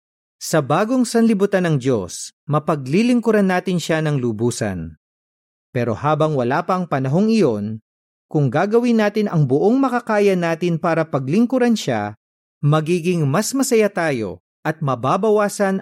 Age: 40-59